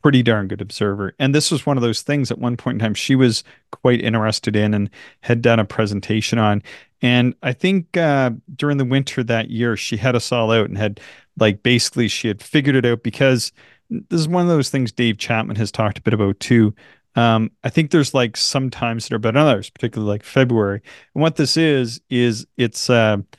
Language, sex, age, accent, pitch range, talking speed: English, male, 40-59, American, 105-130 Hz, 225 wpm